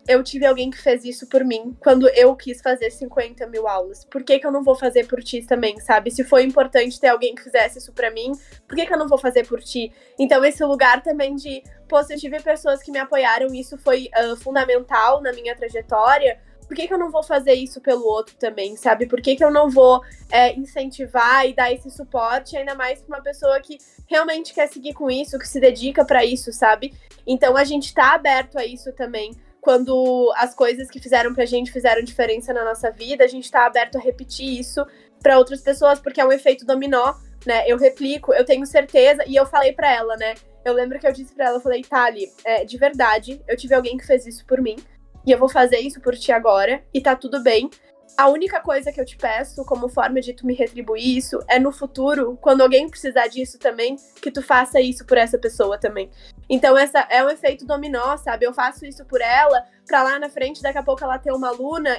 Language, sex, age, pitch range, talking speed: Portuguese, female, 10-29, 245-280 Hz, 230 wpm